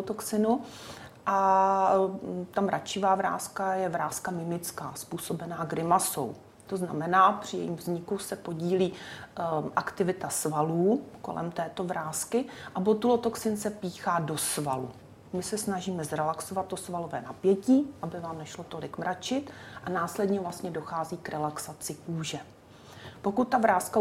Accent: native